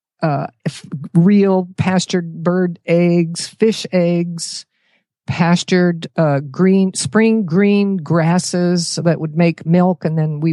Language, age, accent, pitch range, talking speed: English, 50-69, American, 155-185 Hz, 115 wpm